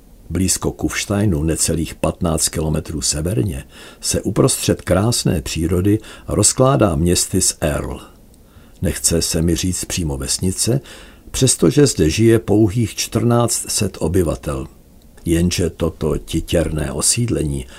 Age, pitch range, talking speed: 60-79, 75-100 Hz, 100 wpm